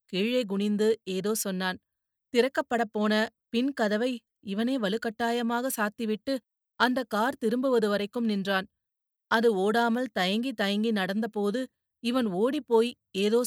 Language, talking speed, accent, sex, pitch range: Tamil, 100 wpm, native, female, 200-240 Hz